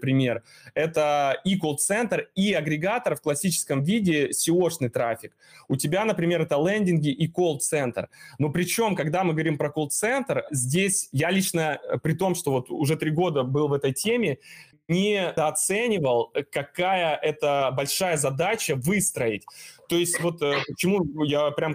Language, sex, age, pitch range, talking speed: Russian, male, 20-39, 145-175 Hz, 145 wpm